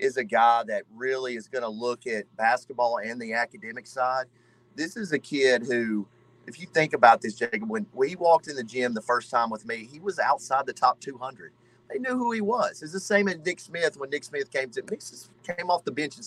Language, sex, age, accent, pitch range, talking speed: English, male, 30-49, American, 120-165 Hz, 235 wpm